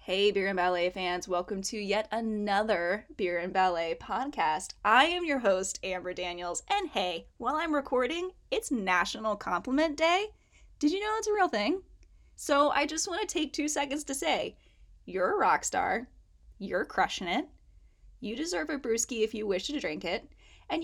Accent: American